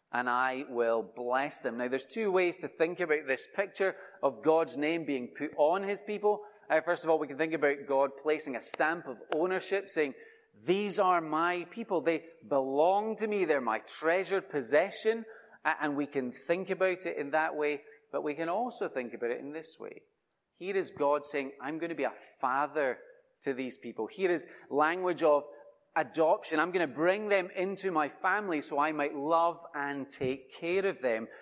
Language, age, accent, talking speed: English, 30-49, British, 195 wpm